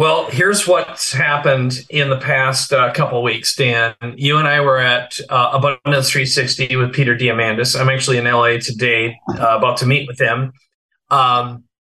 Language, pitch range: English, 125-140 Hz